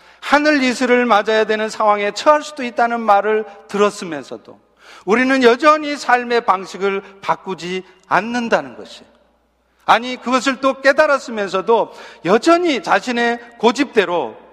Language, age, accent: Korean, 40-59, native